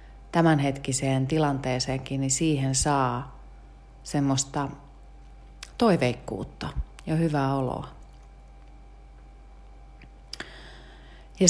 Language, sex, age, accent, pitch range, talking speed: Finnish, female, 30-49, native, 120-140 Hz, 55 wpm